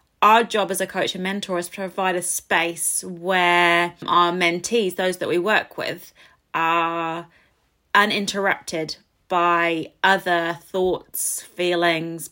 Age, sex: 20-39, female